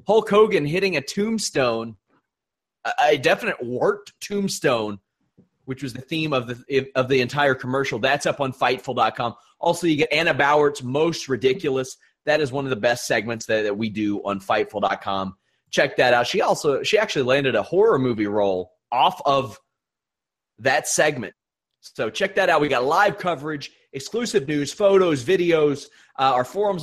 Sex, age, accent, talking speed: male, 30-49, American, 165 wpm